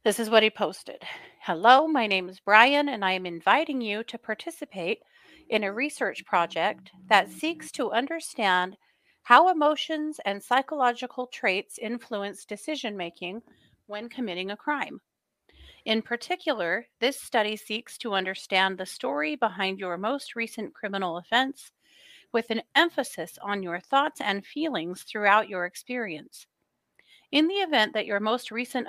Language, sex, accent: English, female, American